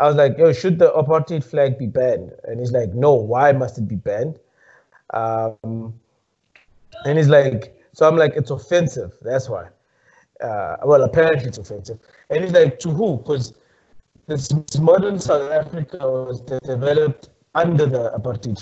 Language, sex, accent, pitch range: English, male, South African, 125-155 Hz